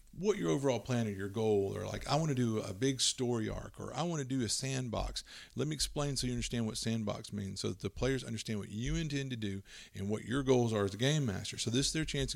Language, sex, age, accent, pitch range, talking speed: English, male, 40-59, American, 105-135 Hz, 275 wpm